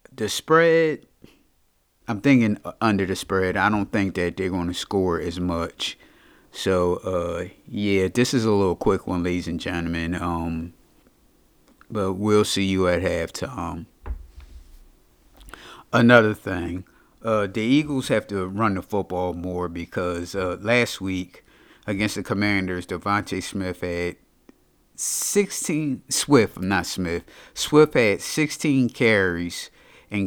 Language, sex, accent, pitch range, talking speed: English, male, American, 90-110 Hz, 130 wpm